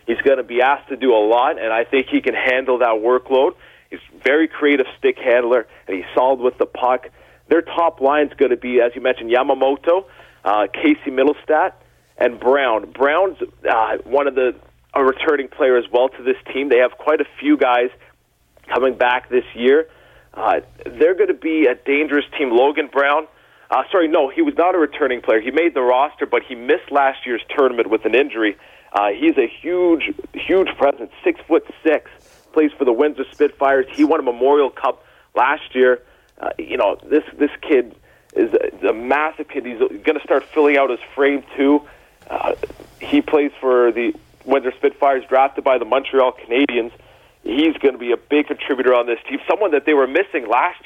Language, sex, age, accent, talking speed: English, male, 40-59, American, 200 wpm